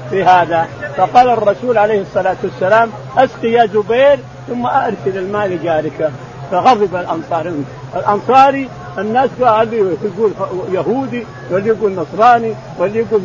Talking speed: 110 wpm